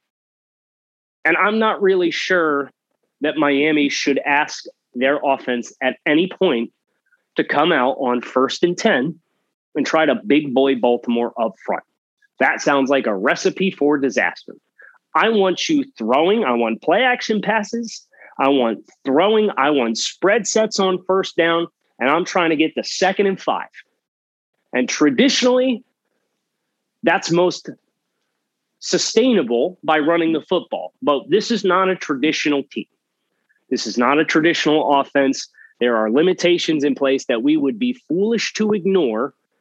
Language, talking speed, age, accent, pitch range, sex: English, 150 wpm, 30-49, American, 140-210 Hz, male